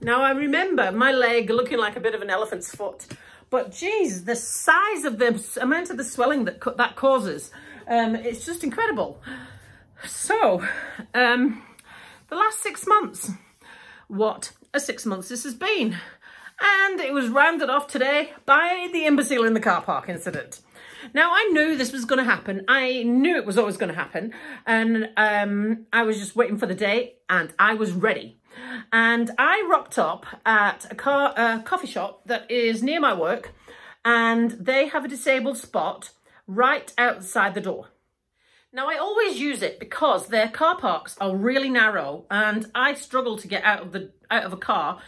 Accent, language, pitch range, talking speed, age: British, English, 220-280 Hz, 180 wpm, 40-59